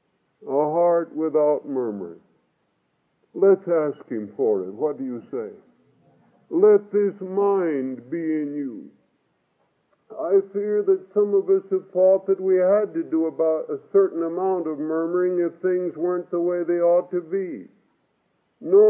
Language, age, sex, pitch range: English, 50-69, female, 150-215 Hz